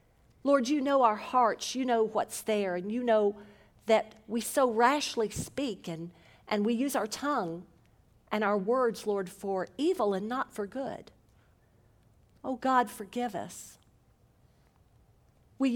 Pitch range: 185-240 Hz